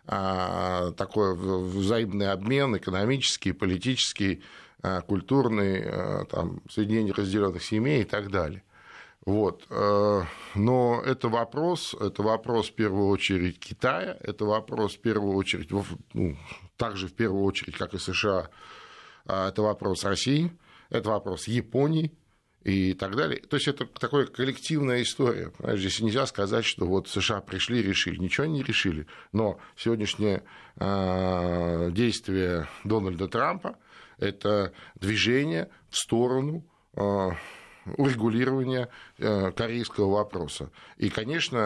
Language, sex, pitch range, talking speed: Russian, male, 95-120 Hz, 115 wpm